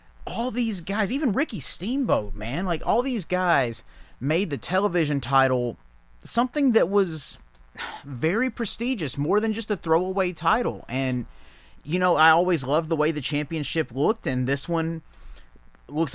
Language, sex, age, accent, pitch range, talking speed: English, male, 30-49, American, 130-180 Hz, 150 wpm